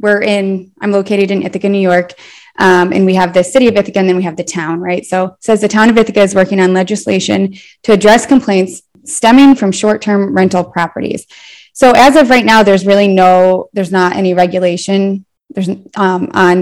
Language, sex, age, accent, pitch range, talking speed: English, female, 20-39, American, 185-215 Hz, 200 wpm